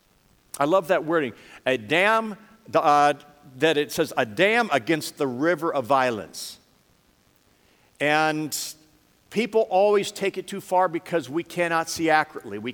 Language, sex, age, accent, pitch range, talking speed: English, male, 50-69, American, 140-175 Hz, 145 wpm